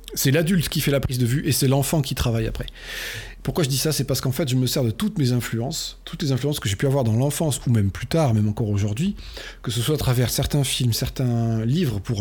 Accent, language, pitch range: French, French, 115-150 Hz